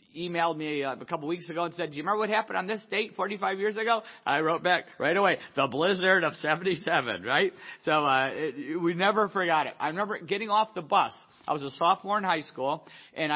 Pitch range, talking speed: 160-200 Hz, 220 wpm